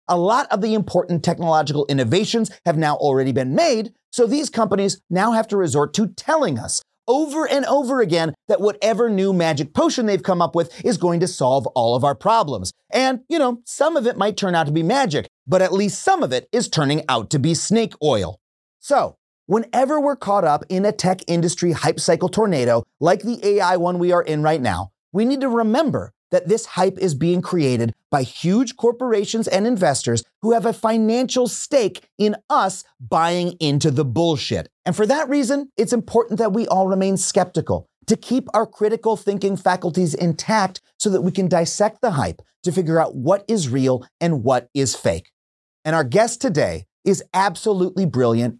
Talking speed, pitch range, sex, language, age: 195 wpm, 160-225 Hz, male, English, 30-49